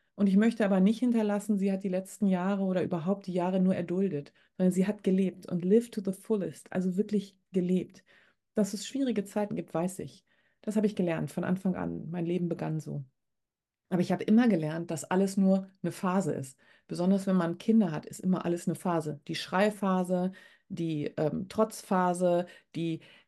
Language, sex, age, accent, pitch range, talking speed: German, female, 30-49, German, 175-215 Hz, 190 wpm